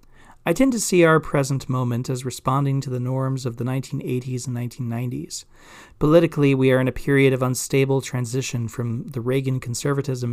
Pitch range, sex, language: 120-140 Hz, male, English